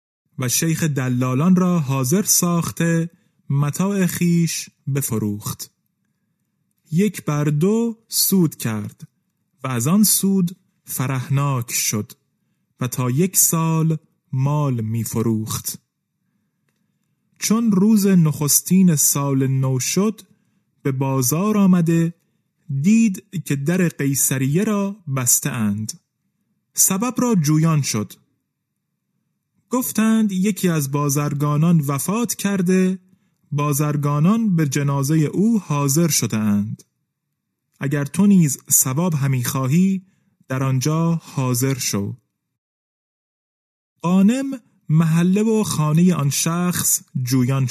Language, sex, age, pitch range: Persian, male, 30-49, 140-185 Hz